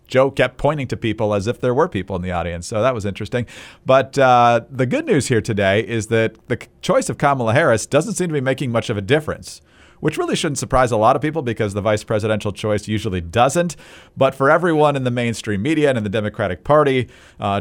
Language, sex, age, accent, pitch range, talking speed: English, male, 40-59, American, 105-135 Hz, 230 wpm